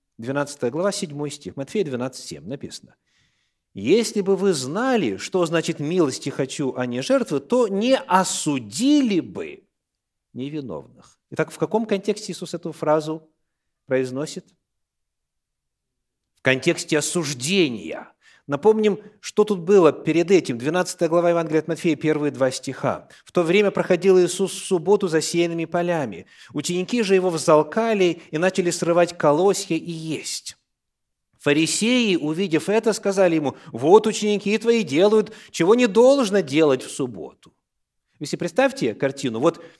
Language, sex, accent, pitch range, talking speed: Russian, male, native, 145-205 Hz, 130 wpm